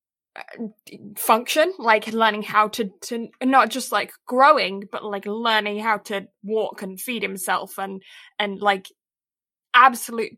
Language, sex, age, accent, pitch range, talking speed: English, female, 20-39, British, 210-255 Hz, 135 wpm